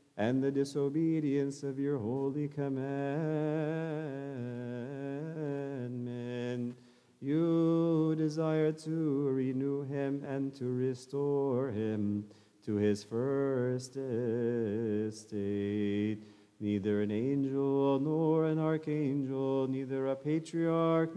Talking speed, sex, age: 80 wpm, male, 40-59